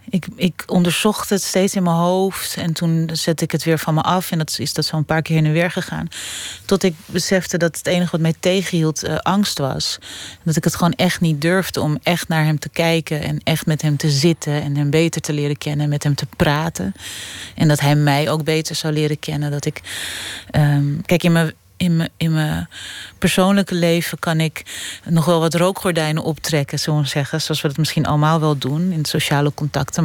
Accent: Dutch